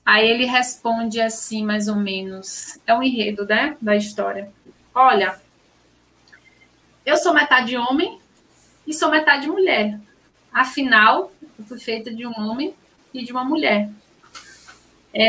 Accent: Brazilian